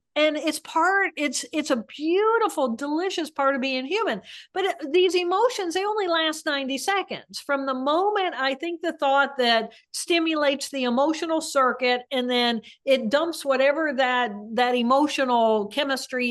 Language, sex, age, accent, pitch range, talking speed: English, female, 50-69, American, 255-330 Hz, 150 wpm